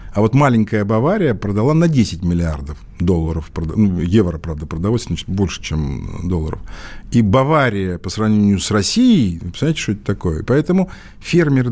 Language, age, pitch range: Russian, 50-69, 95-130 Hz